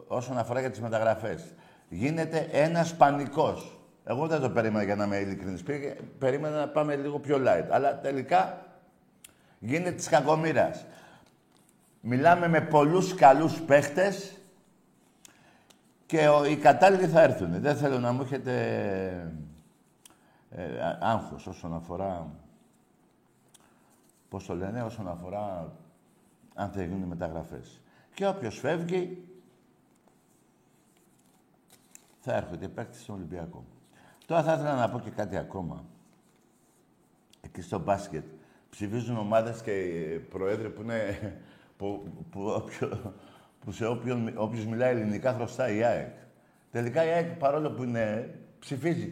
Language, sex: Greek, male